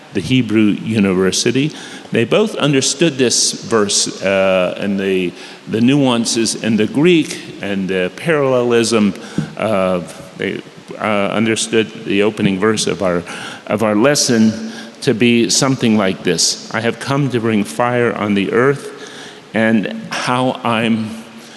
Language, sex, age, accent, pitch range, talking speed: English, male, 50-69, American, 105-125 Hz, 135 wpm